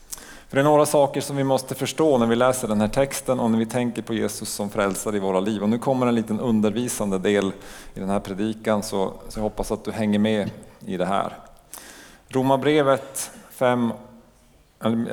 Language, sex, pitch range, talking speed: Swedish, male, 95-115 Hz, 200 wpm